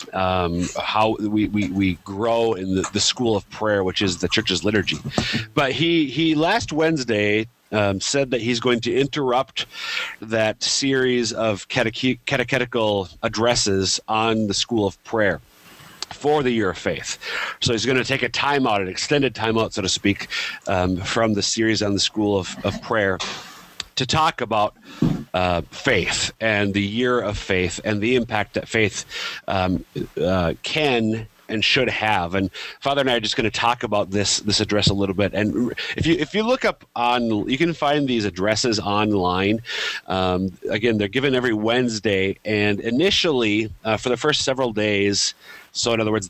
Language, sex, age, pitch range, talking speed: English, male, 40-59, 100-125 Hz, 180 wpm